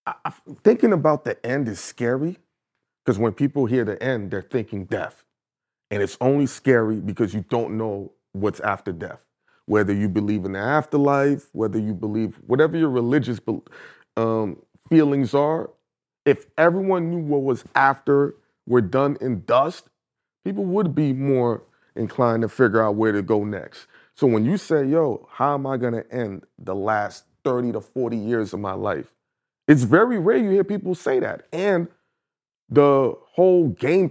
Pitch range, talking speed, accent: 110-140 Hz, 170 wpm, American